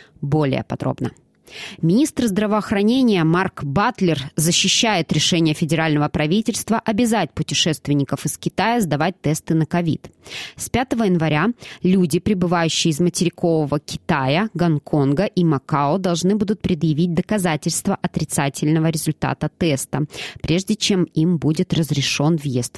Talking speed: 110 wpm